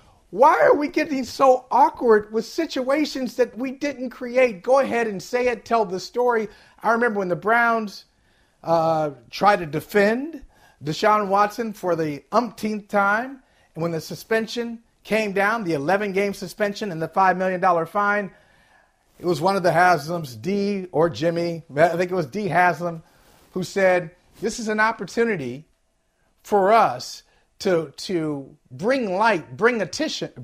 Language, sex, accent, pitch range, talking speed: English, male, American, 175-245 Hz, 155 wpm